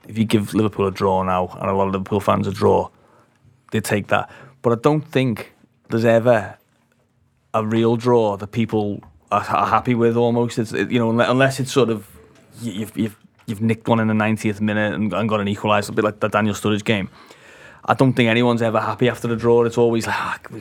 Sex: male